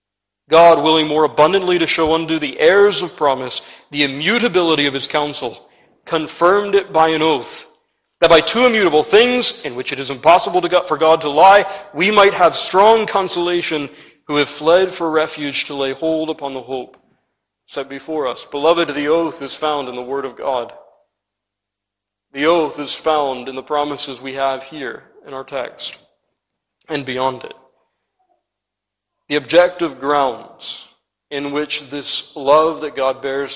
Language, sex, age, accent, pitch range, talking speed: English, male, 40-59, American, 130-160 Hz, 160 wpm